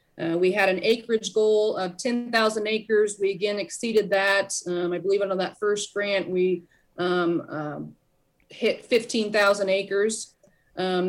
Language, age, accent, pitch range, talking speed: English, 30-49, American, 180-215 Hz, 145 wpm